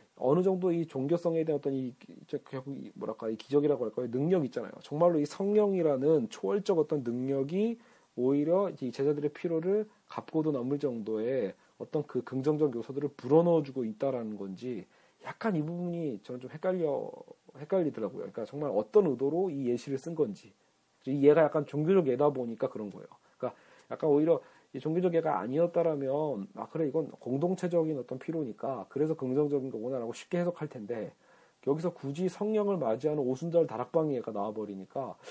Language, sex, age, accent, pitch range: Korean, male, 40-59, native, 135-170 Hz